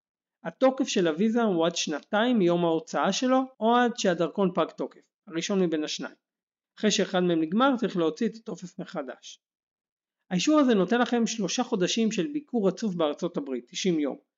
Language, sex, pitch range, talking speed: Hebrew, male, 165-220 Hz, 165 wpm